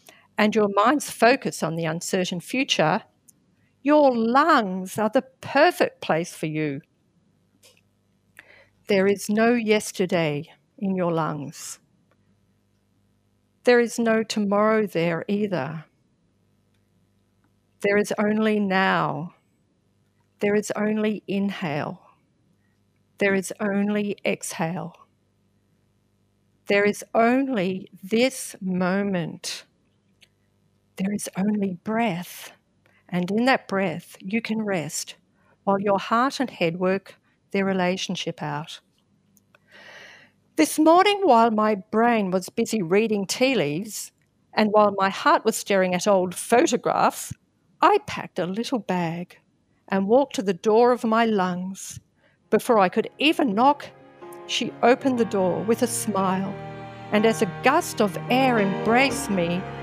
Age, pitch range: 50-69, 165-225 Hz